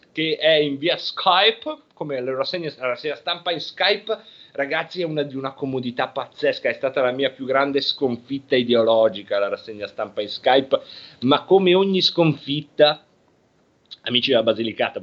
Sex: male